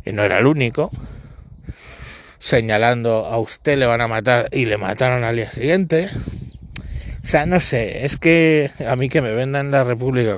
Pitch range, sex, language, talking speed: 110-135 Hz, male, Spanish, 185 wpm